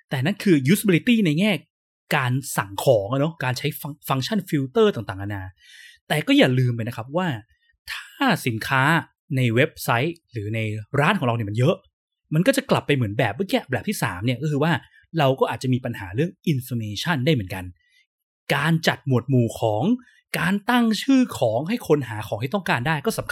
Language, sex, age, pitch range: Thai, male, 20-39, 120-170 Hz